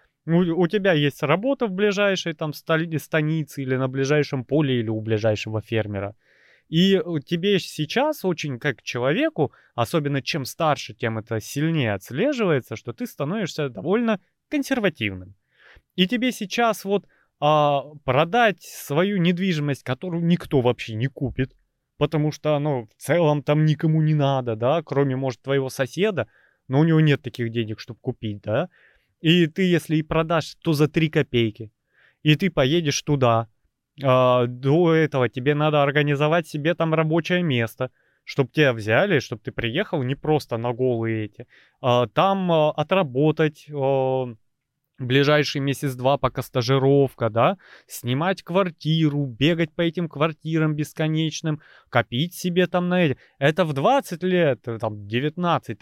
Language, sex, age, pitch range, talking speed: Russian, male, 20-39, 130-165 Hz, 140 wpm